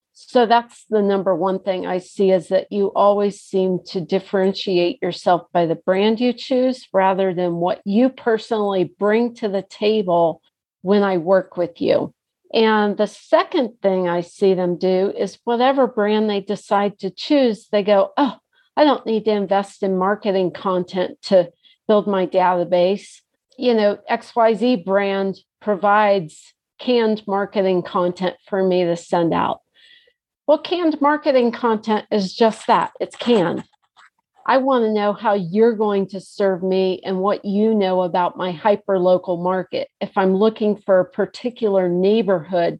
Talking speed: 155 wpm